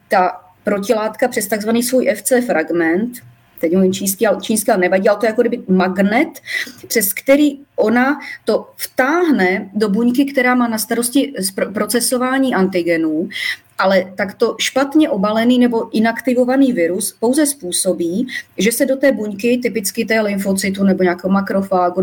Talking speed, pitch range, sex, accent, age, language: 130 wpm, 195-260 Hz, female, native, 30-49, Czech